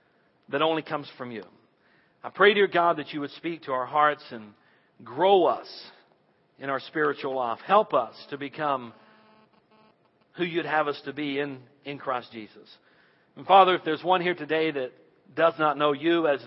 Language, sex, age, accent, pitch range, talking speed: English, male, 50-69, American, 120-155 Hz, 180 wpm